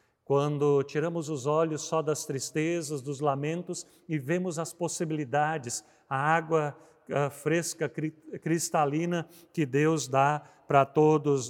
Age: 50-69